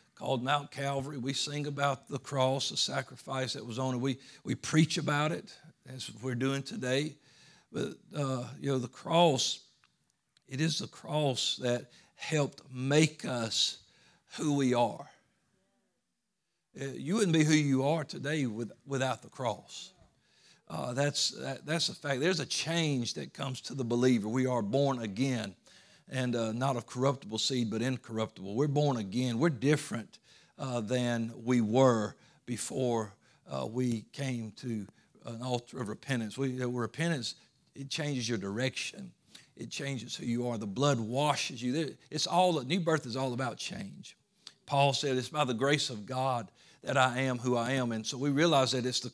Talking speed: 165 wpm